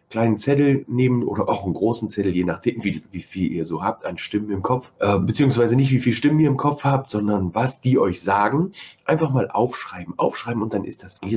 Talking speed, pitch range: 230 wpm, 115-150 Hz